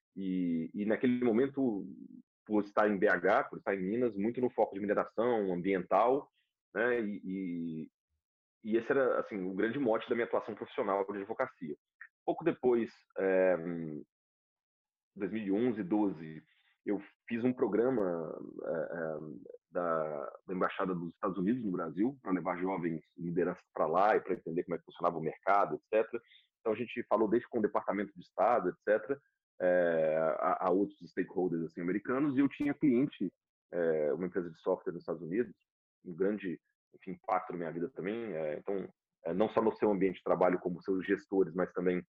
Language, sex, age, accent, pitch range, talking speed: Portuguese, male, 40-59, Brazilian, 90-125 Hz, 170 wpm